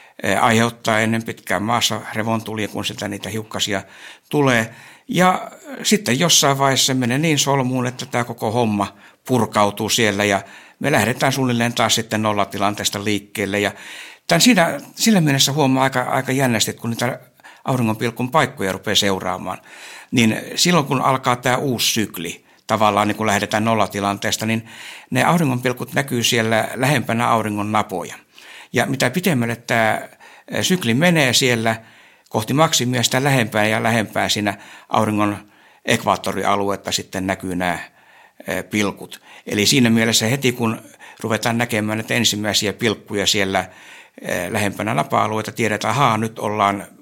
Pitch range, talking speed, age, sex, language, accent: 105-125 Hz, 135 wpm, 60-79, male, Finnish, native